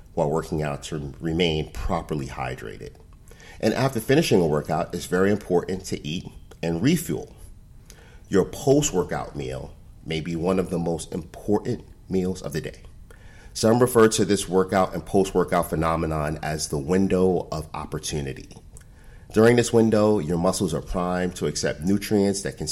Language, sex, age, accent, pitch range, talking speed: English, male, 40-59, American, 85-110 Hz, 155 wpm